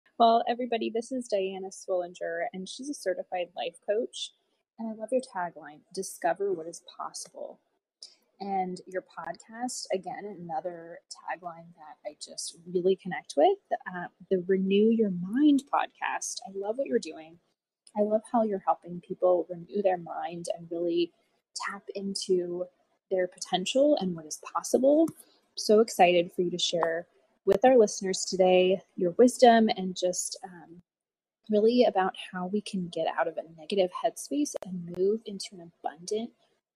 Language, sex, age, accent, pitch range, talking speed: English, female, 20-39, American, 175-230 Hz, 155 wpm